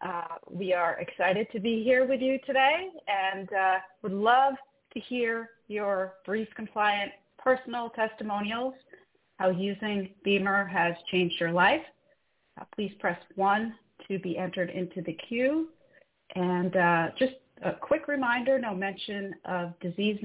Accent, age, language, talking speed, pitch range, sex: American, 40-59, English, 140 wpm, 180-230 Hz, female